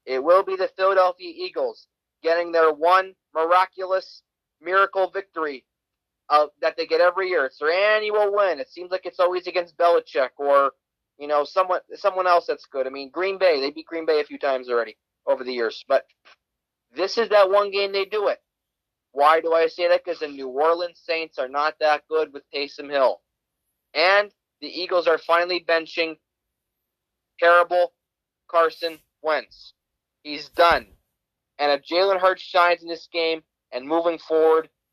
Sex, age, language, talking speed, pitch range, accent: male, 30-49, English, 170 wpm, 145-185 Hz, American